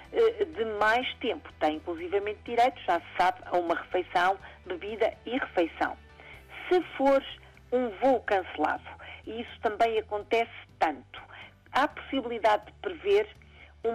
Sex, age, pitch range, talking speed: female, 50-69, 185-280 Hz, 130 wpm